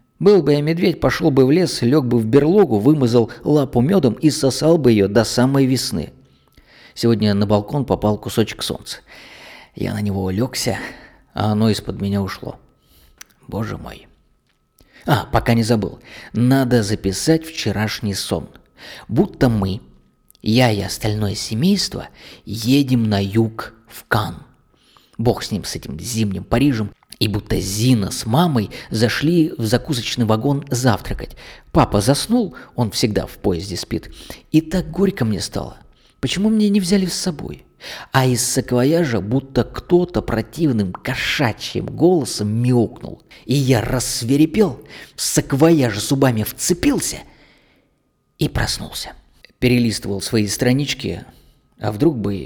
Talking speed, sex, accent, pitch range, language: 135 wpm, male, native, 105-145 Hz, Russian